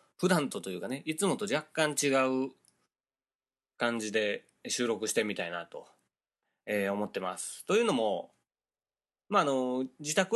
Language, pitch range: Japanese, 110-175 Hz